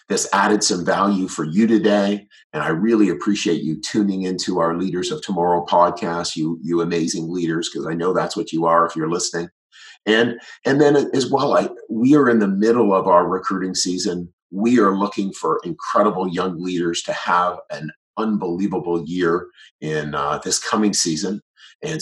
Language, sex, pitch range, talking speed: English, male, 85-105 Hz, 180 wpm